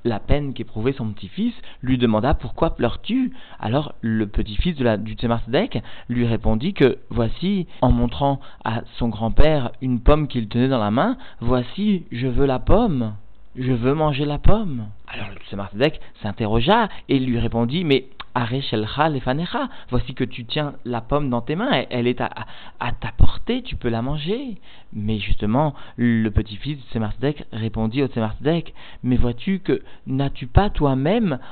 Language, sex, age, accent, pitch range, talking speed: French, male, 40-59, French, 110-140 Hz, 155 wpm